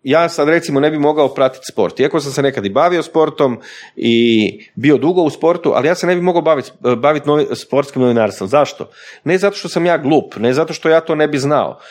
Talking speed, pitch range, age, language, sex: 230 wpm, 120-165 Hz, 30-49, Croatian, male